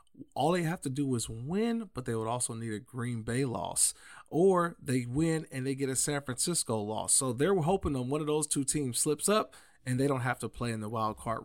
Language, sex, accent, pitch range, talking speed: English, male, American, 115-145 Hz, 245 wpm